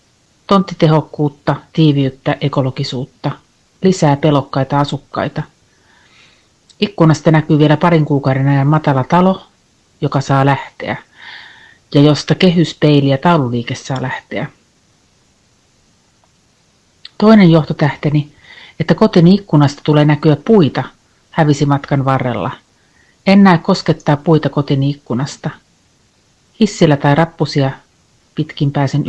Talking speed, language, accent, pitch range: 95 wpm, Finnish, native, 140-170 Hz